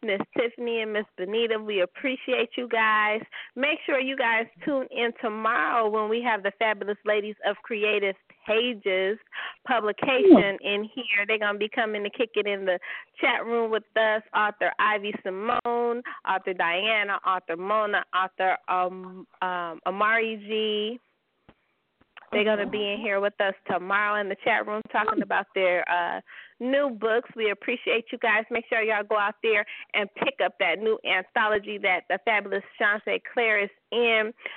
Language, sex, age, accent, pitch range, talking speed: English, female, 30-49, American, 200-235 Hz, 170 wpm